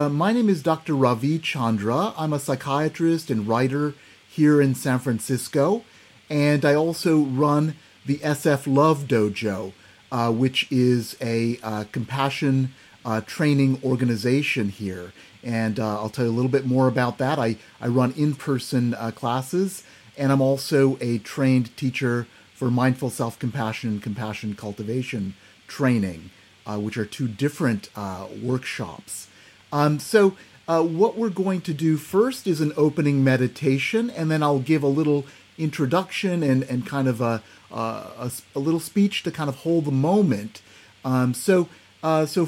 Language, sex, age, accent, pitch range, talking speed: English, male, 30-49, American, 115-155 Hz, 155 wpm